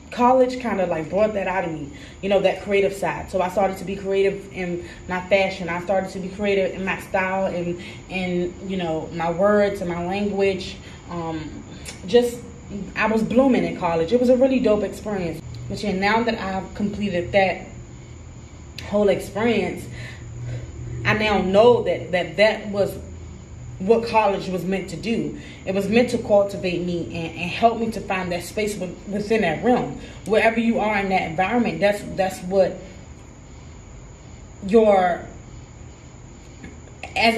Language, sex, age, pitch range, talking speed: English, female, 20-39, 180-215 Hz, 165 wpm